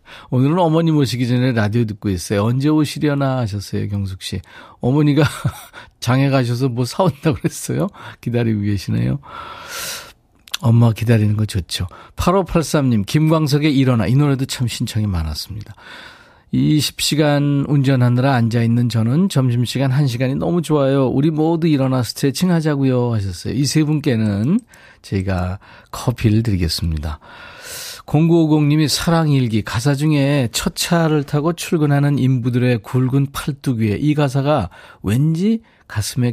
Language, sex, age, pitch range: Korean, male, 40-59, 110-150 Hz